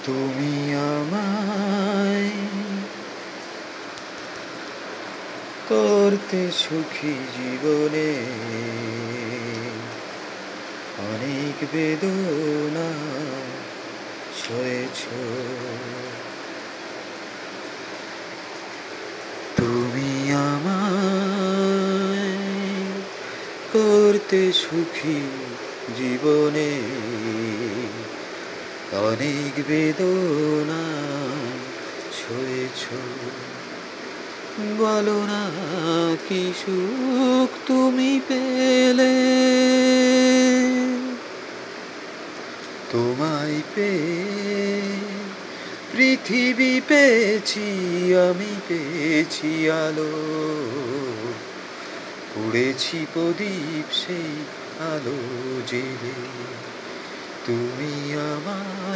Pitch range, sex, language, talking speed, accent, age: 140-200 Hz, male, Bengali, 30 wpm, native, 40-59